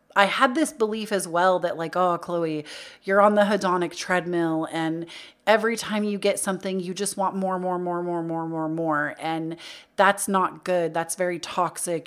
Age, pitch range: 30-49, 170-205 Hz